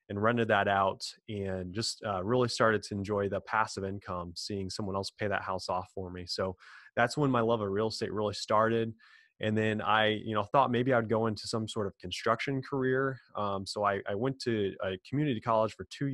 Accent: American